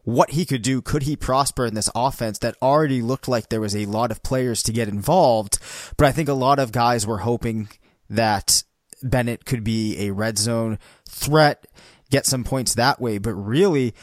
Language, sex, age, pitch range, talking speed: English, male, 20-39, 115-140 Hz, 200 wpm